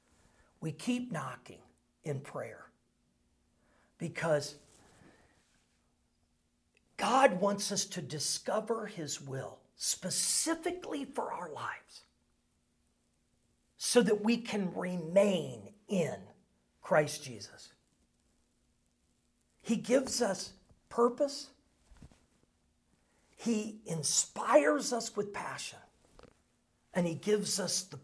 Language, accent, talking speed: English, American, 85 wpm